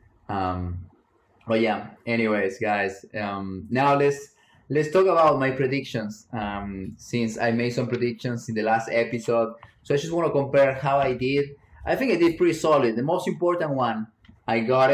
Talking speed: 175 wpm